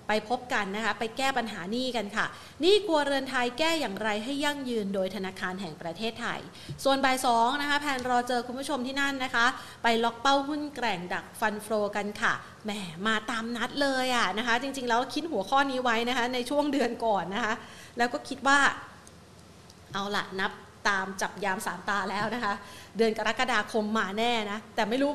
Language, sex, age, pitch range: Thai, female, 30-49, 210-255 Hz